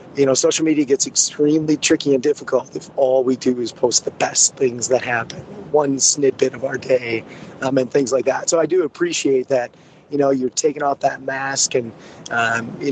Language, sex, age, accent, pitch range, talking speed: English, male, 30-49, American, 130-165 Hz, 210 wpm